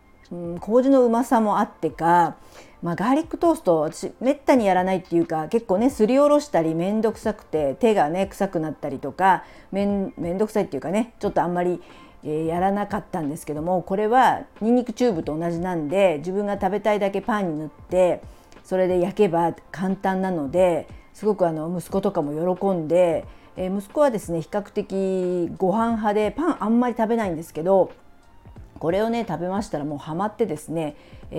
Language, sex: Japanese, female